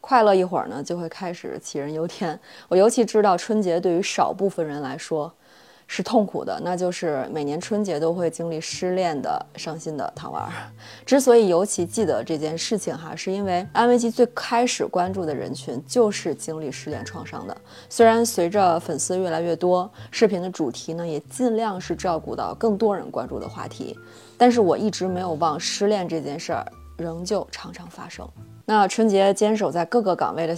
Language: Chinese